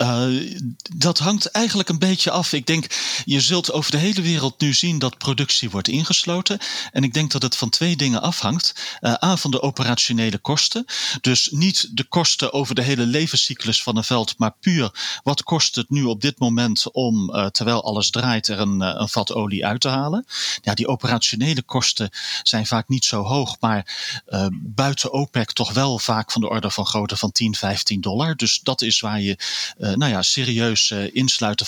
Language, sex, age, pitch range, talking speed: Dutch, male, 40-59, 110-145 Hz, 195 wpm